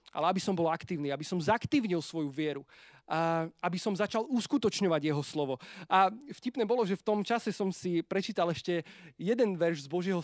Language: Slovak